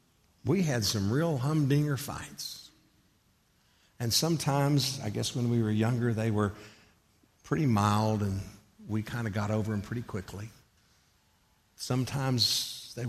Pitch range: 95-120 Hz